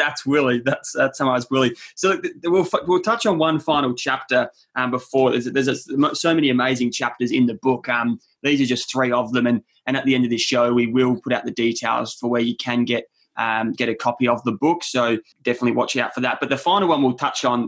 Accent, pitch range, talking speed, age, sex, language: Australian, 120-135 Hz, 250 wpm, 20-39, male, English